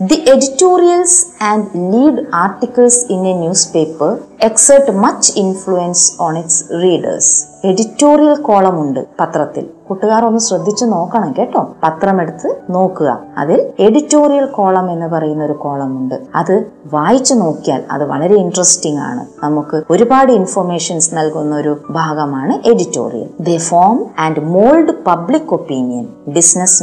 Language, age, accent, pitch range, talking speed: Malayalam, 20-39, native, 160-250 Hz, 115 wpm